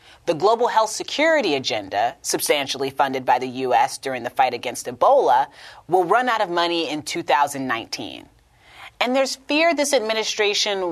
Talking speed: 150 wpm